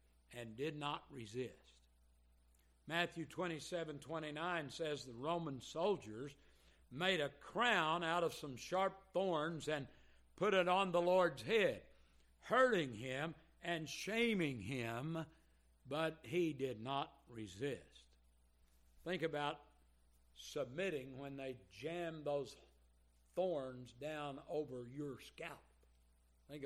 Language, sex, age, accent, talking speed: English, male, 60-79, American, 110 wpm